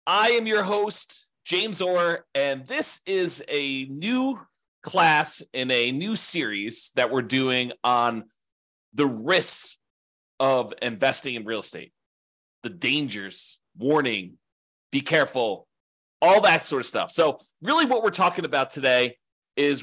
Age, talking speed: 30-49, 135 wpm